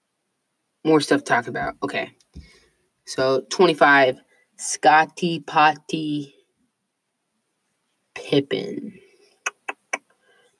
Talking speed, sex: 70 wpm, female